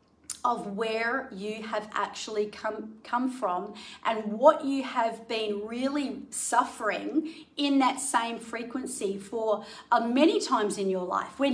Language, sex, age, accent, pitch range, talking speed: English, female, 40-59, Australian, 215-270 Hz, 140 wpm